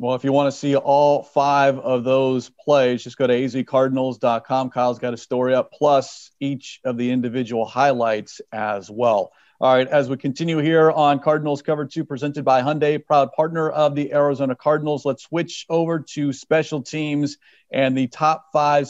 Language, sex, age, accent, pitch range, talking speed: English, male, 40-59, American, 135-160 Hz, 180 wpm